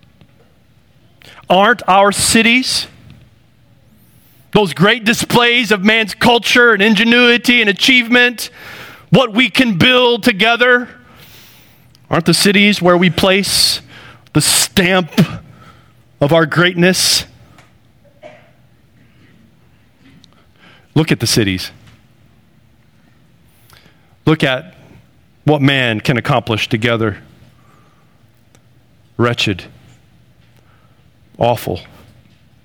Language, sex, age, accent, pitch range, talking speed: English, male, 40-59, American, 120-170 Hz, 75 wpm